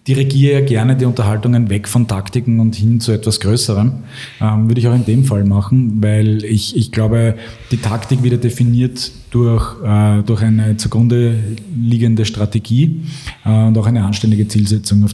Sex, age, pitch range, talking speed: male, 20-39, 110-130 Hz, 165 wpm